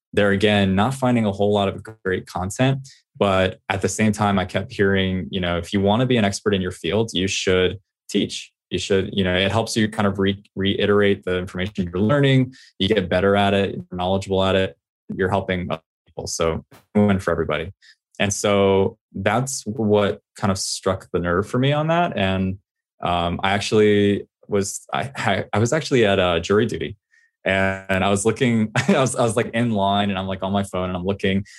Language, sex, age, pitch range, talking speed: English, male, 20-39, 95-105 Hz, 215 wpm